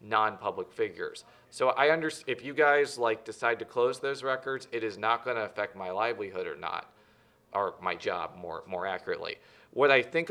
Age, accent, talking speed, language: 40-59, American, 190 wpm, English